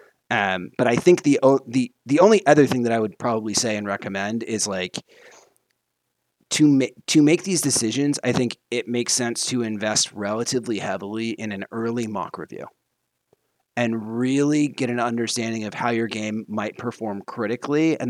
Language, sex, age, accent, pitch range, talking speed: English, male, 30-49, American, 110-135 Hz, 175 wpm